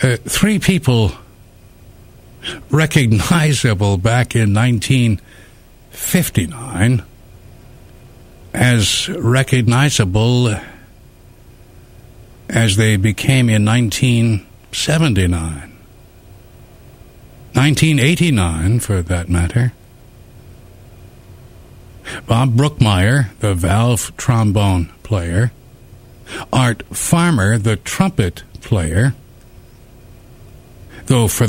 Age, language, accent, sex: 60-79, English, American, male